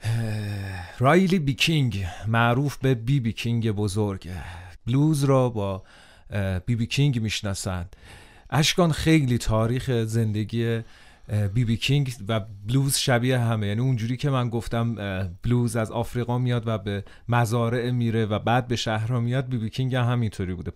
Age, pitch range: 30-49, 100-125 Hz